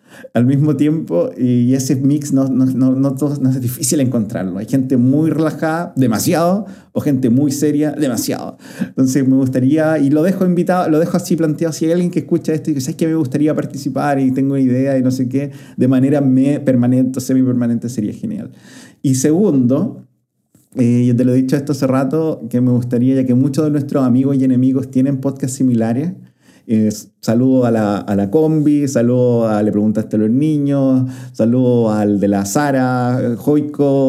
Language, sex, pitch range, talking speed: Spanish, male, 120-150 Hz, 190 wpm